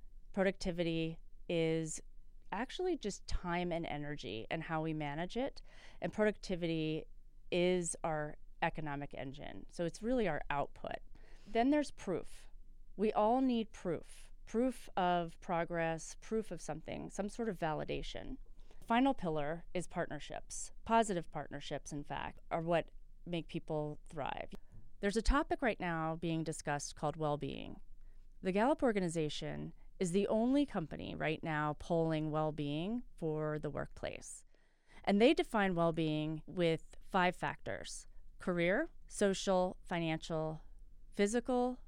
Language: English